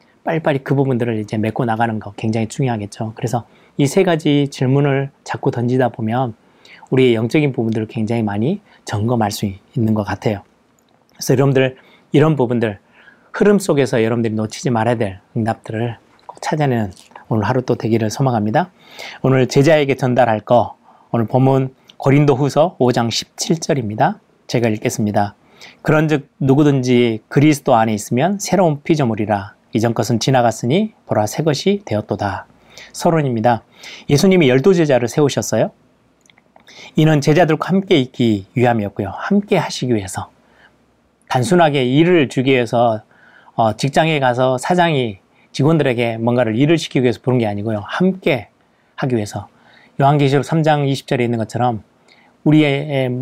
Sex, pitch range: male, 115-150 Hz